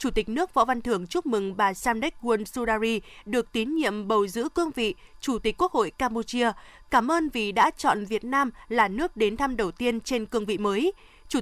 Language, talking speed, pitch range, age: Vietnamese, 215 wpm, 220-295 Hz, 20-39